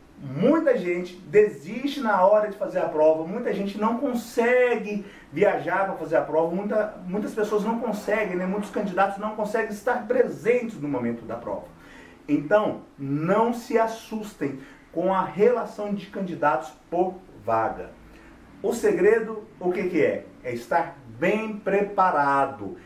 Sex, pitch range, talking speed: male, 180-230 Hz, 140 wpm